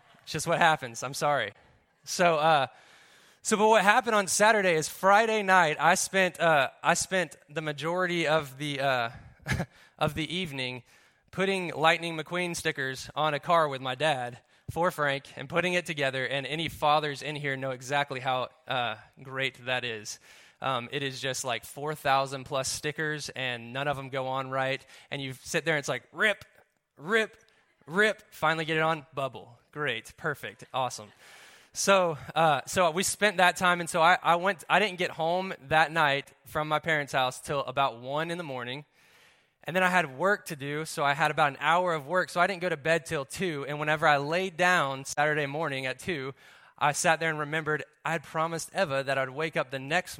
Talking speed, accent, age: 200 wpm, American, 20-39